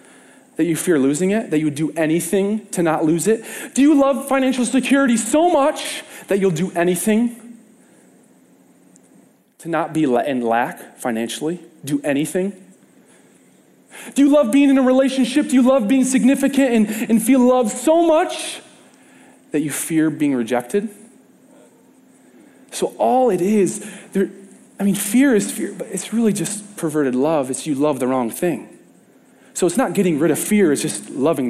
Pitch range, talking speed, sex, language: 160-250 Hz, 165 wpm, male, English